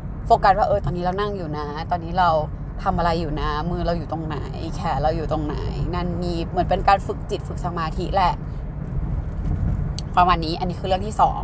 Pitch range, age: 155-195 Hz, 20-39